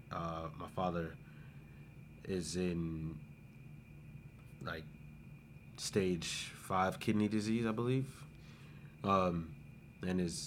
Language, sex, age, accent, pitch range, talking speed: English, male, 30-49, American, 85-105 Hz, 85 wpm